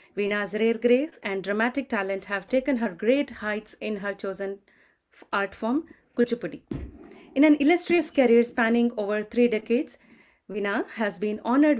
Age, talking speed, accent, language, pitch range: 30-49, 145 wpm, Indian, French, 195-245 Hz